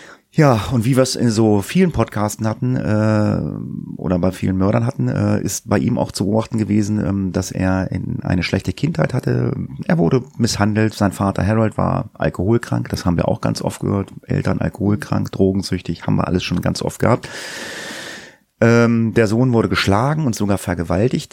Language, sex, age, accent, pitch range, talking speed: German, male, 30-49, German, 95-125 Hz, 185 wpm